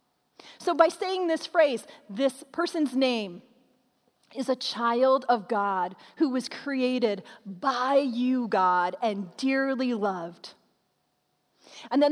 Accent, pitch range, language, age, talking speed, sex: American, 225-310 Hz, English, 40-59, 120 wpm, female